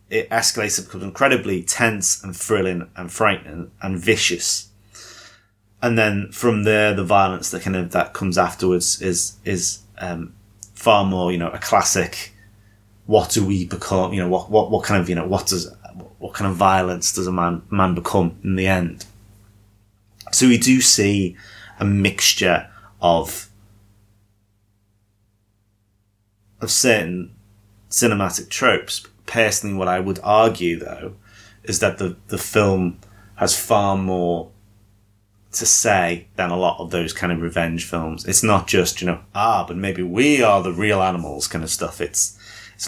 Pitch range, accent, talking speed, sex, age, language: 90-105 Hz, British, 160 wpm, male, 30-49, English